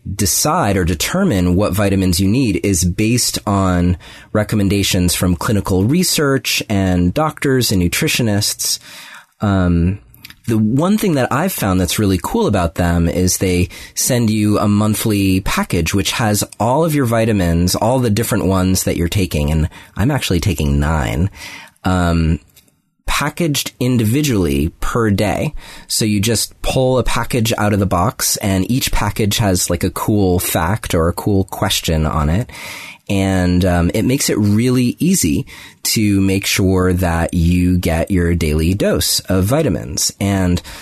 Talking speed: 150 wpm